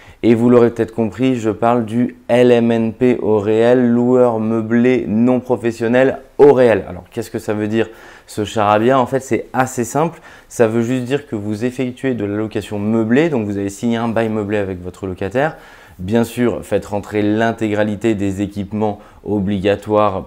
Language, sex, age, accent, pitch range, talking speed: French, male, 20-39, French, 100-120 Hz, 175 wpm